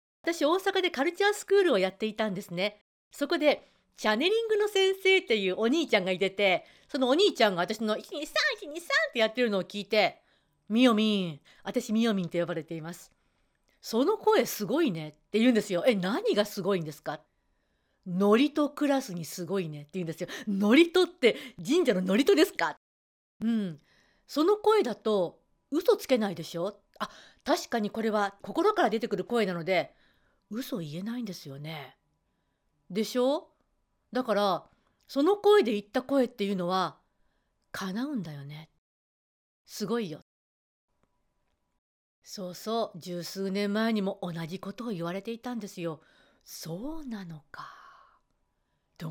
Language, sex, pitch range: Japanese, female, 185-285 Hz